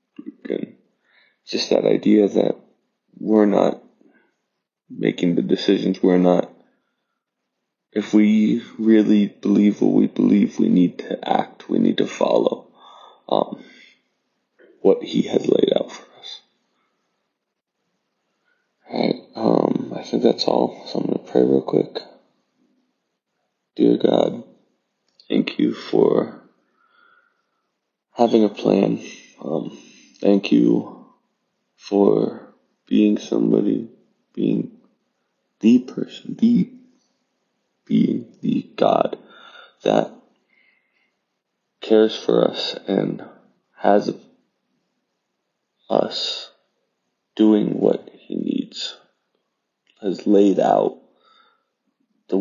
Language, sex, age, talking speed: English, male, 20-39, 95 wpm